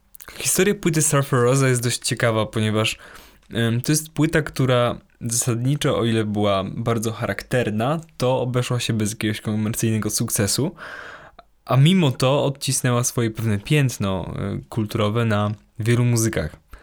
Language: Polish